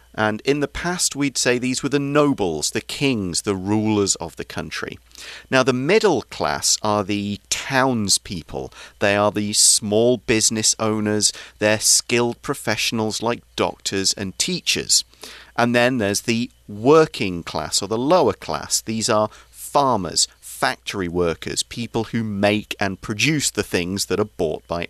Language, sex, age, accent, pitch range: Chinese, male, 40-59, British, 100-125 Hz